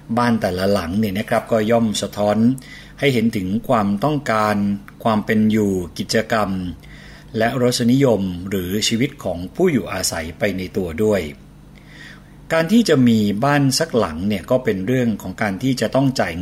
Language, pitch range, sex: Thai, 100-135 Hz, male